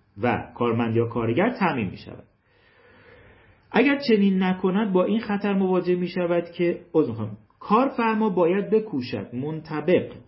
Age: 40-59